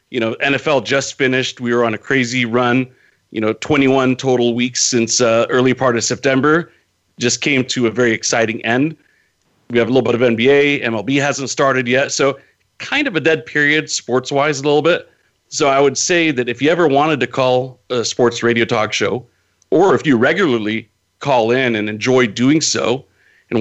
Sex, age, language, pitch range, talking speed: male, 40-59, English, 115-140 Hz, 200 wpm